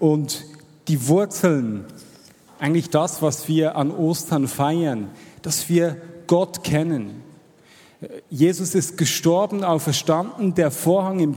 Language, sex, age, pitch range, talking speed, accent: German, male, 40-59, 150-175 Hz, 110 wpm, German